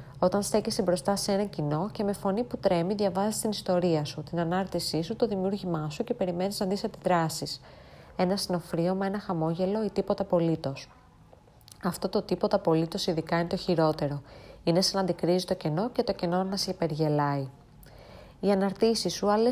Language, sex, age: Greek, female, 20-39